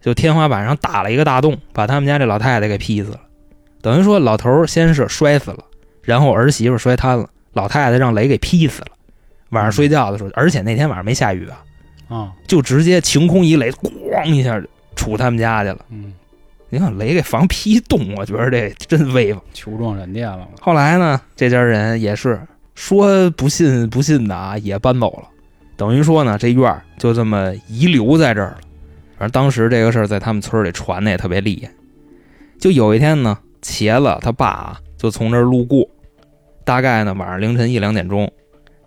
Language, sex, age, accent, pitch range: Chinese, male, 20-39, native, 105-140 Hz